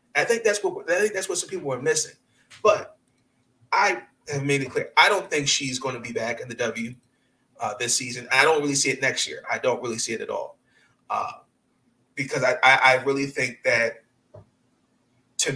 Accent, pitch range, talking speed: American, 125-145 Hz, 210 wpm